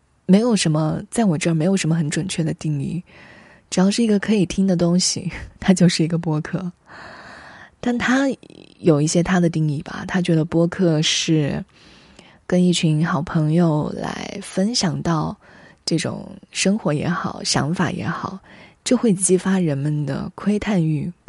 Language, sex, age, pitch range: Chinese, female, 20-39, 160-195 Hz